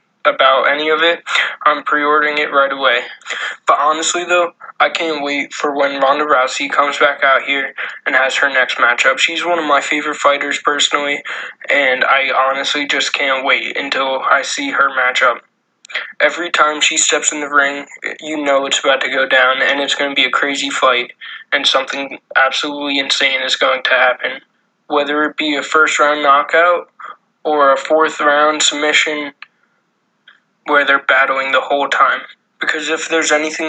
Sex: male